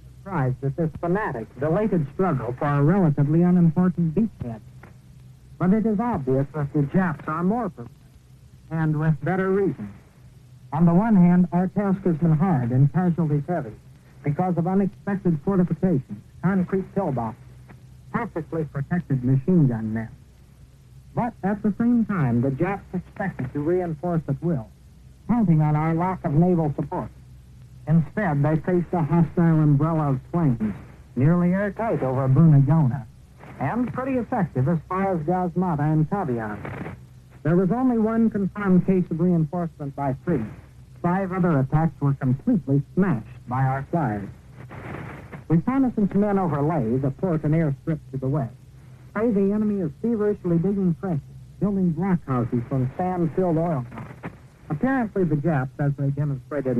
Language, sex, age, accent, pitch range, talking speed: English, male, 60-79, American, 135-185 Hz, 145 wpm